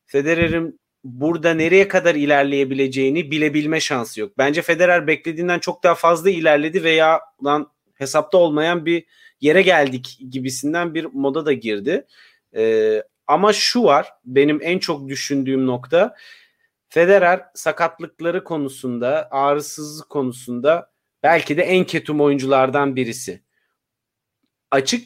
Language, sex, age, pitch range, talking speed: Turkish, male, 40-59, 135-180 Hz, 110 wpm